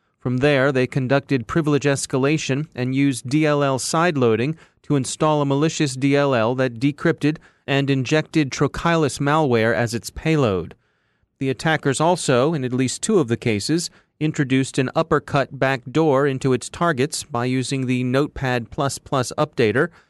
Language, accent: English, American